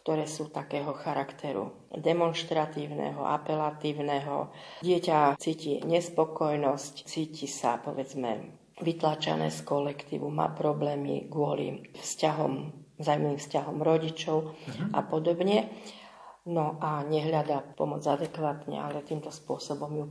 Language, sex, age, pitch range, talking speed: Slovak, female, 40-59, 150-170 Hz, 95 wpm